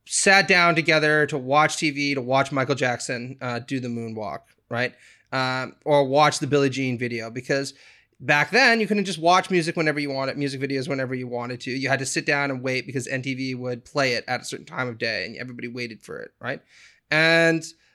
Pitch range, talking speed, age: 130-165 Hz, 215 wpm, 20-39